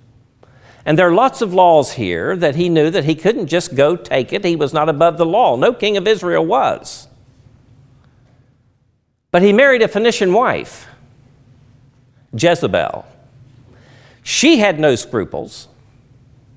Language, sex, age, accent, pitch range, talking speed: English, male, 50-69, American, 120-165 Hz, 140 wpm